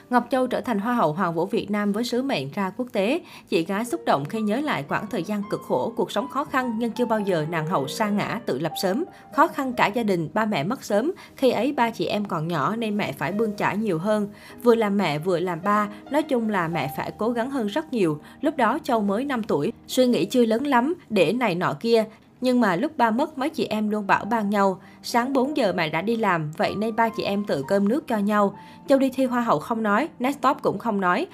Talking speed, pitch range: 260 wpm, 190-245 Hz